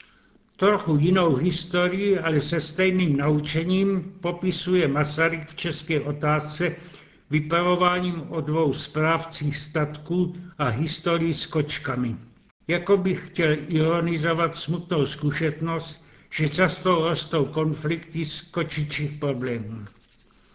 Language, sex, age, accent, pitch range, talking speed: Czech, male, 70-89, native, 145-170 Hz, 100 wpm